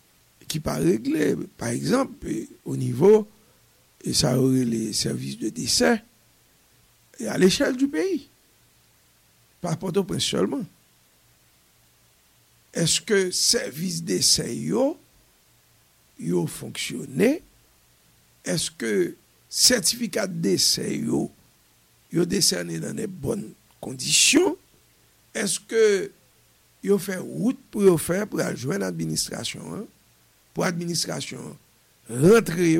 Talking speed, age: 100 wpm, 60-79